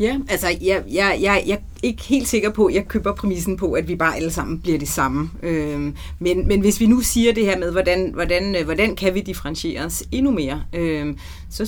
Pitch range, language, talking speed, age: 160-205 Hz, Danish, 225 wpm, 30-49